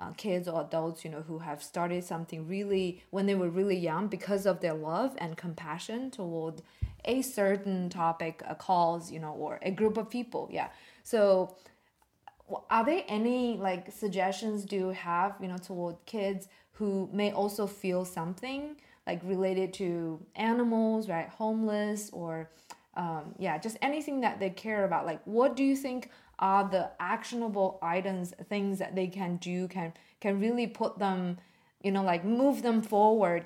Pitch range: 180-220 Hz